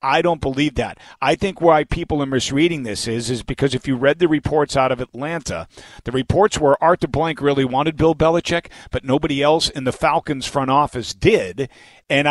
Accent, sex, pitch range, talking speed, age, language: American, male, 125-170 Hz, 205 wpm, 50-69, English